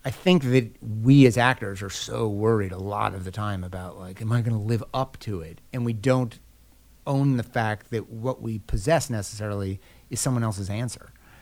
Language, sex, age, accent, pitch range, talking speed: English, male, 30-49, American, 95-120 Hz, 205 wpm